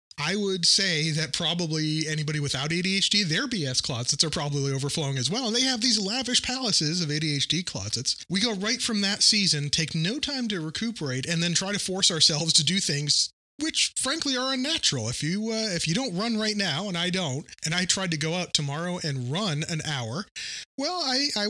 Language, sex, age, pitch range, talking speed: English, male, 30-49, 135-200 Hz, 205 wpm